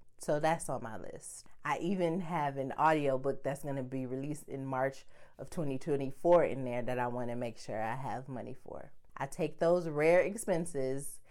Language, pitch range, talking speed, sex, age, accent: English, 130-155 Hz, 180 wpm, female, 30-49, American